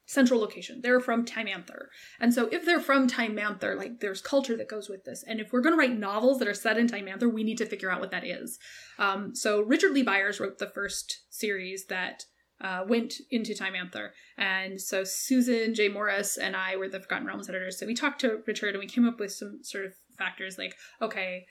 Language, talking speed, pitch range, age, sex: English, 235 wpm, 195-235 Hz, 20-39, female